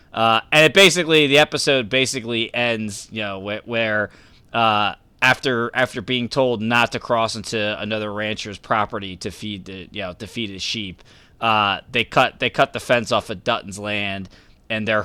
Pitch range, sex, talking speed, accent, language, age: 110-150 Hz, male, 185 wpm, American, English, 20-39